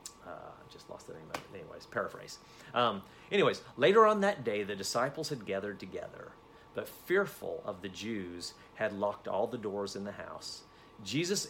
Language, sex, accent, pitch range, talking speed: English, male, American, 100-145 Hz, 175 wpm